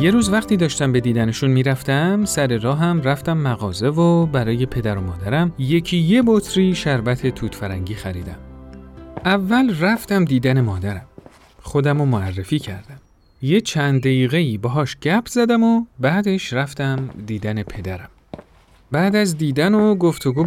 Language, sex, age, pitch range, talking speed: Persian, male, 40-59, 110-175 Hz, 135 wpm